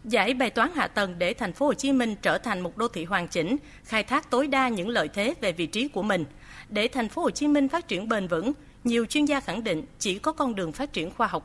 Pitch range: 190-270 Hz